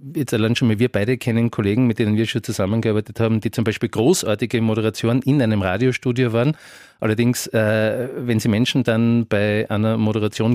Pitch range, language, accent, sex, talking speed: 110-125 Hz, German, Austrian, male, 165 wpm